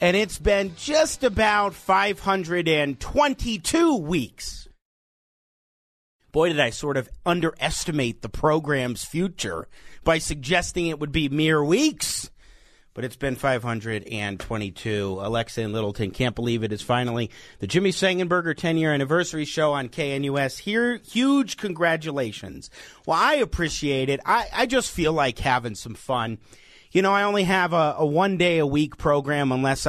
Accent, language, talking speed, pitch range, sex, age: American, English, 140 wpm, 125-185 Hz, male, 40-59